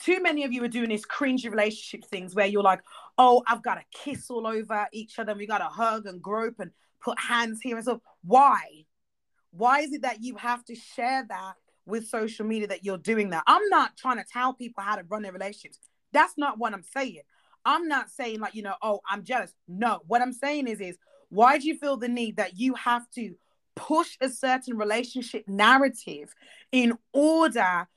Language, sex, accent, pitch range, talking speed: English, female, British, 210-260 Hz, 210 wpm